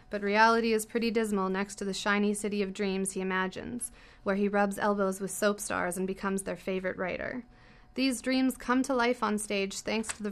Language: English